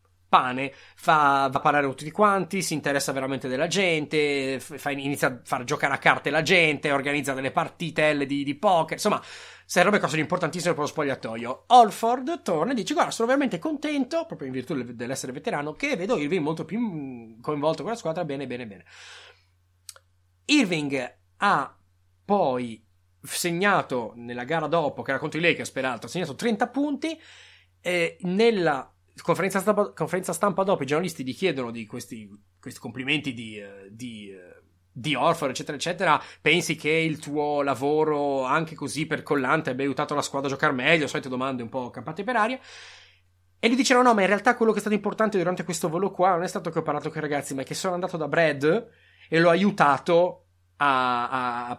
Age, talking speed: 30-49, 185 wpm